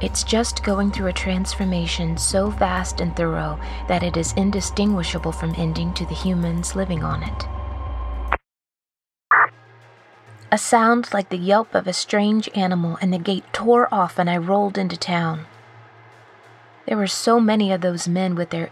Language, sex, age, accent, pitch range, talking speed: English, female, 30-49, American, 130-195 Hz, 160 wpm